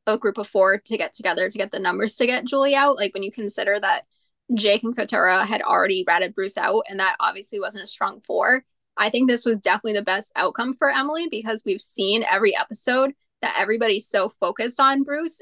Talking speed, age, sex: 220 wpm, 20-39, female